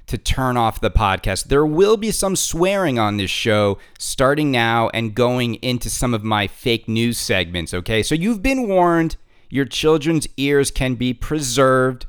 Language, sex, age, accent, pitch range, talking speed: English, male, 40-59, American, 115-155 Hz, 175 wpm